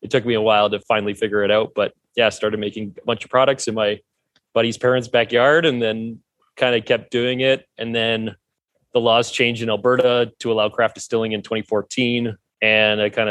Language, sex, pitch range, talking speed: English, male, 105-125 Hz, 205 wpm